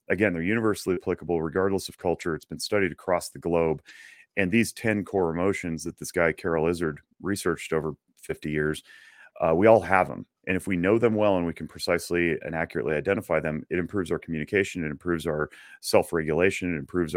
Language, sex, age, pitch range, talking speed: English, male, 30-49, 80-95 Hz, 195 wpm